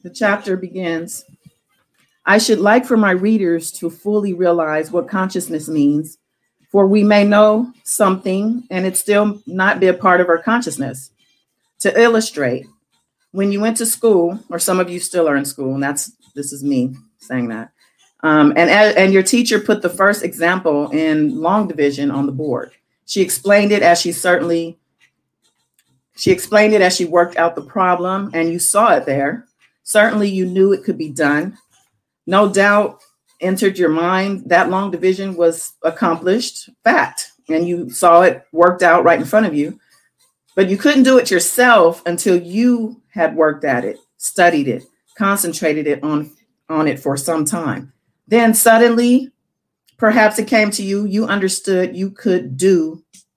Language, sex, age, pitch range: English, female, 40-59, 165-210 Hz